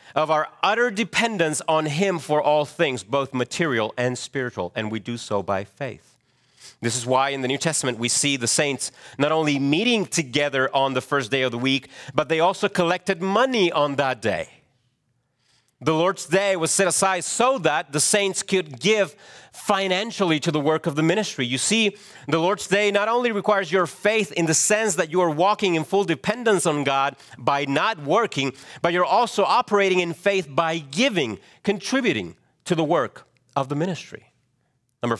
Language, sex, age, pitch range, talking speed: English, male, 40-59, 125-180 Hz, 185 wpm